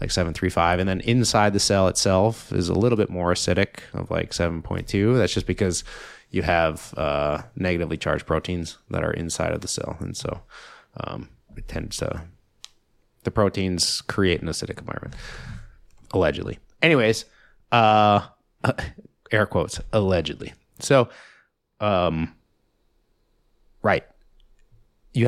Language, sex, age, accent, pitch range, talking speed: English, male, 30-49, American, 90-110 Hz, 130 wpm